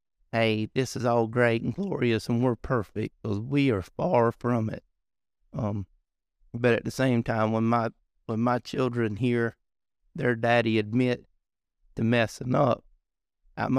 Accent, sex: American, male